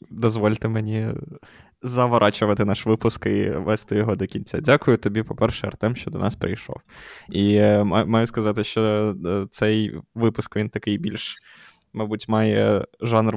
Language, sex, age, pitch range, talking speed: Ukrainian, male, 20-39, 105-115 Hz, 135 wpm